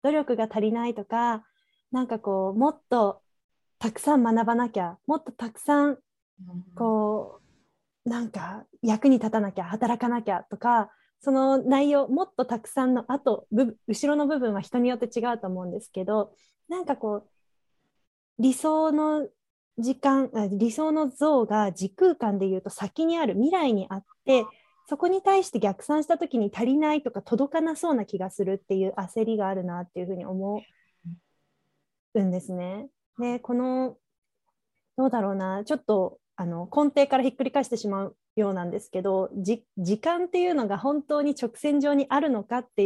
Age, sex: 20-39, female